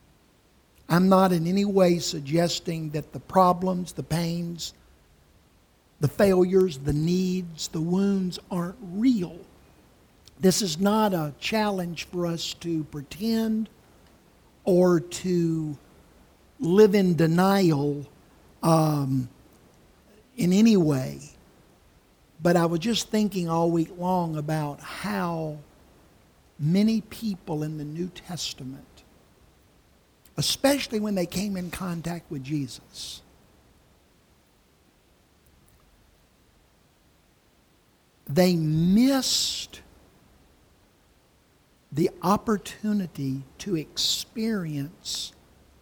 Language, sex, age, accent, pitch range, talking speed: English, male, 50-69, American, 150-215 Hz, 90 wpm